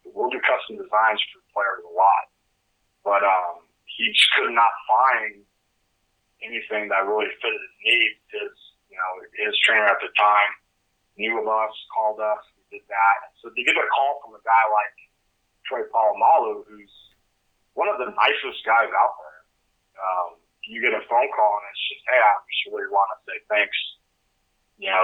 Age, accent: 30-49, American